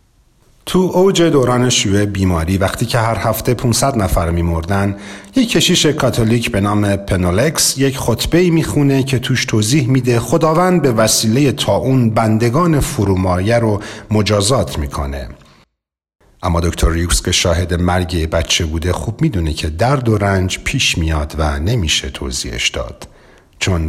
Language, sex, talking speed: Persian, male, 140 wpm